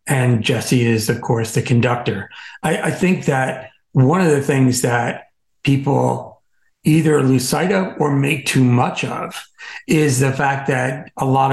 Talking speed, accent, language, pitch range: 165 wpm, American, English, 120-145 Hz